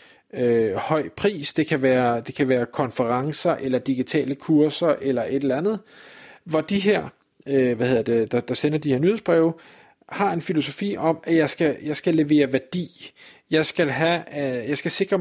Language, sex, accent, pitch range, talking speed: Danish, male, native, 140-175 Hz, 185 wpm